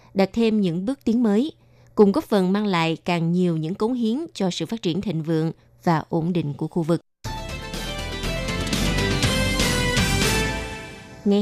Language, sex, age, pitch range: Vietnamese, female, 20-39, 165-210 Hz